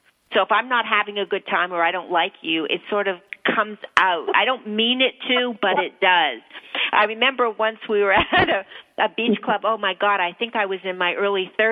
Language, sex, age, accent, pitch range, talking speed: English, female, 50-69, American, 195-230 Hz, 235 wpm